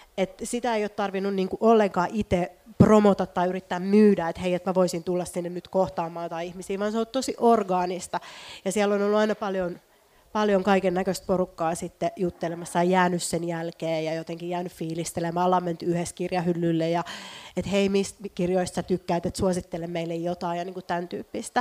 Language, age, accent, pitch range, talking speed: Finnish, 30-49, native, 180-205 Hz, 180 wpm